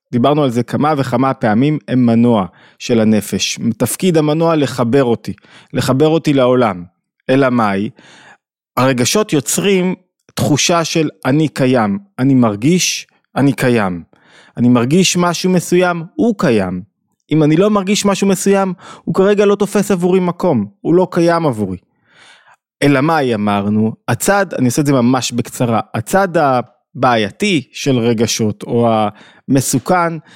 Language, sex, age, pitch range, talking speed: Hebrew, male, 20-39, 125-180 Hz, 135 wpm